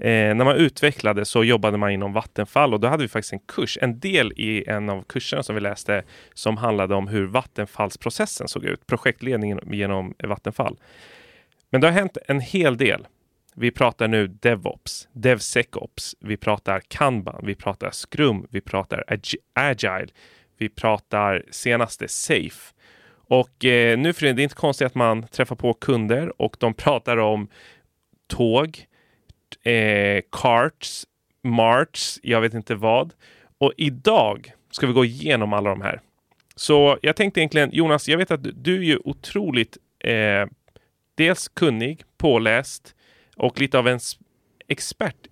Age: 30-49